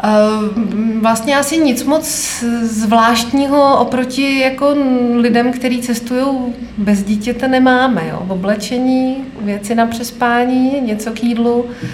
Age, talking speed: 20-39, 105 wpm